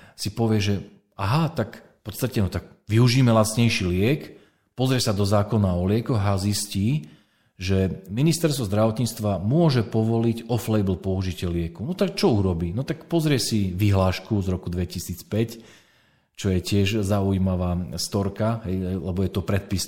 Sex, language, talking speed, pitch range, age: male, Slovak, 150 wpm, 95-125 Hz, 40-59